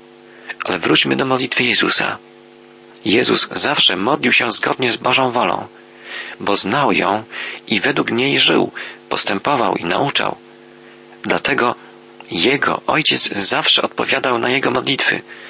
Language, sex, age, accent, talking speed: Polish, male, 40-59, native, 120 wpm